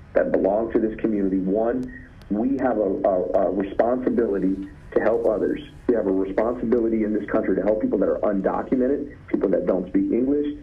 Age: 40-59